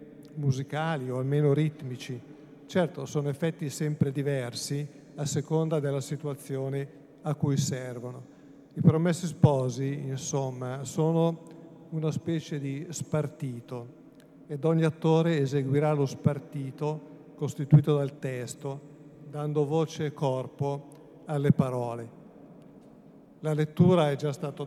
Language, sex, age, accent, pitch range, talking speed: Italian, male, 50-69, native, 140-155 Hz, 110 wpm